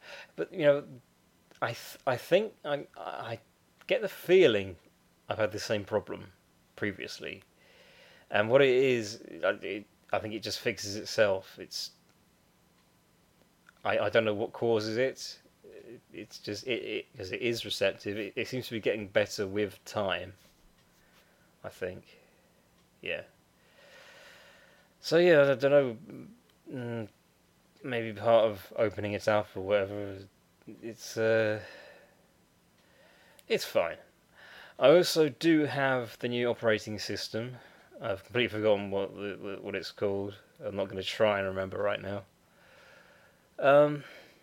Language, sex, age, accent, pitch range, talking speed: English, male, 30-49, British, 100-125 Hz, 140 wpm